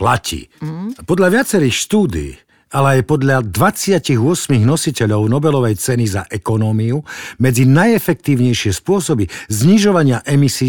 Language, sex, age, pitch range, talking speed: Slovak, male, 60-79, 120-165 Hz, 100 wpm